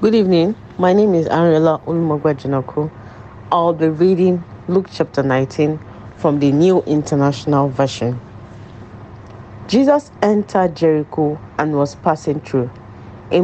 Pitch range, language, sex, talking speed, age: 115-170 Hz, English, female, 115 wpm, 40-59